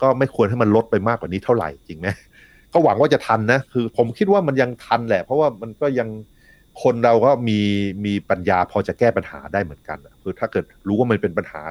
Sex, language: male, Thai